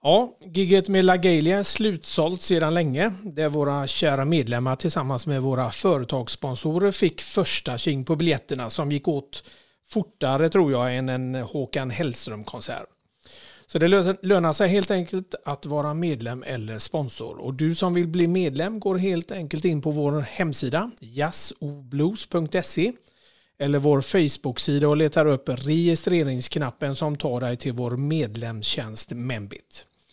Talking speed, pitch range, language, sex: 140 wpm, 130-175 Hz, Swedish, male